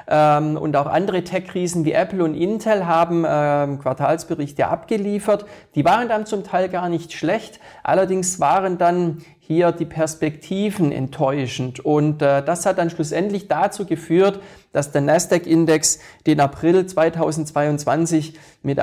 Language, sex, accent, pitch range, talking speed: German, male, German, 150-185 Hz, 125 wpm